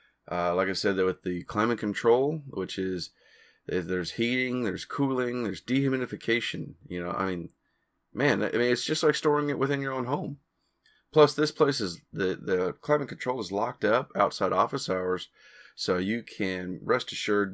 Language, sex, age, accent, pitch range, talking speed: English, male, 30-49, American, 100-145 Hz, 180 wpm